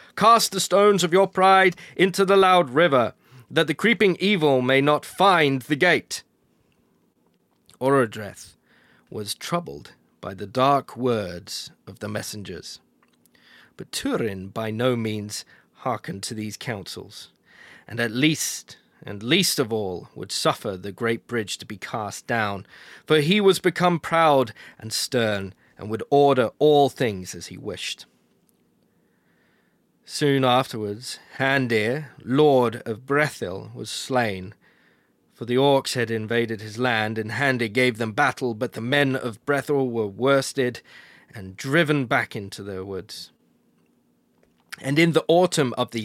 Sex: male